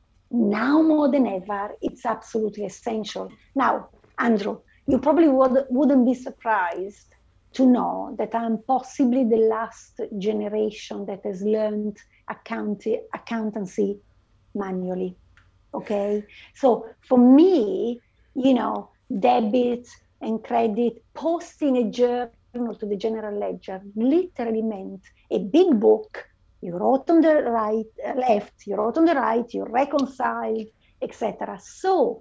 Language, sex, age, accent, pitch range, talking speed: English, female, 50-69, Italian, 215-270 Hz, 125 wpm